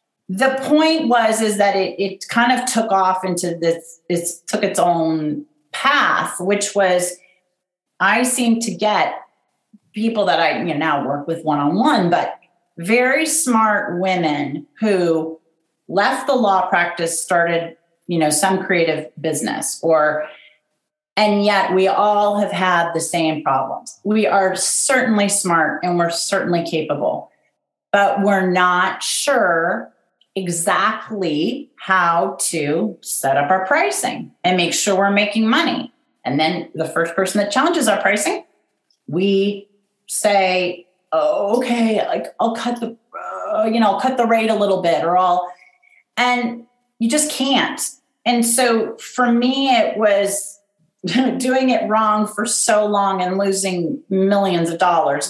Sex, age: female, 40-59